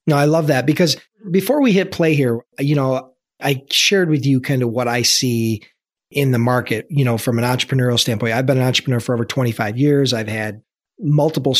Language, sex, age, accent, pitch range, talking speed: English, male, 40-59, American, 125-160 Hz, 210 wpm